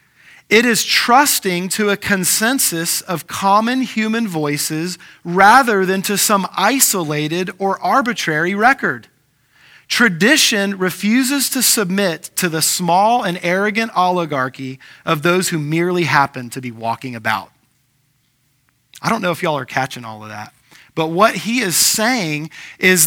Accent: American